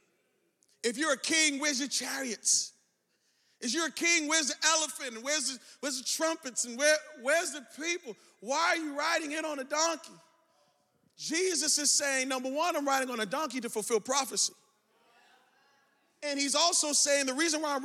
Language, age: English, 40-59